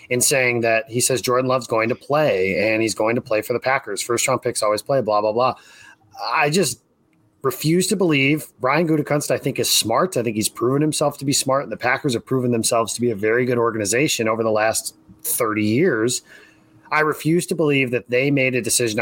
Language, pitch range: English, 110-145 Hz